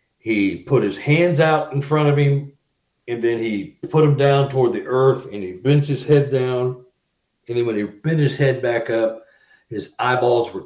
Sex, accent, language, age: male, American, English, 60-79